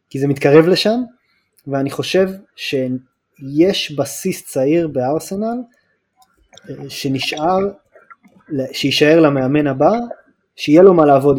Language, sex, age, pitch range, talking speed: Hebrew, male, 20-39, 140-180 Hz, 95 wpm